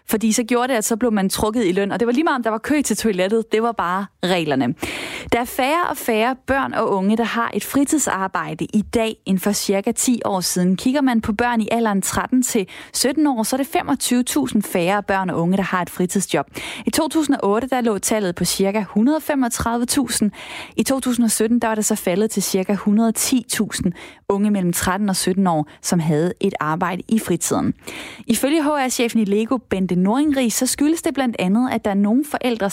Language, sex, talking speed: Danish, female, 205 wpm